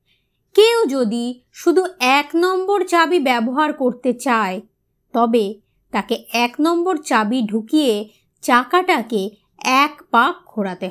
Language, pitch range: Bengali, 225-325 Hz